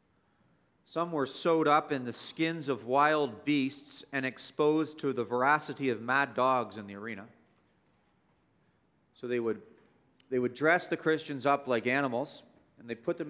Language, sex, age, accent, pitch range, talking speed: English, male, 40-59, American, 140-180 Hz, 160 wpm